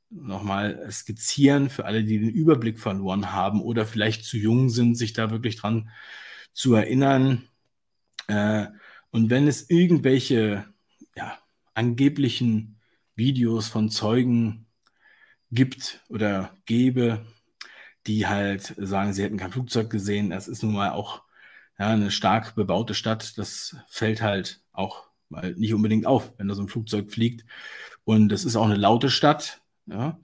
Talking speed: 140 wpm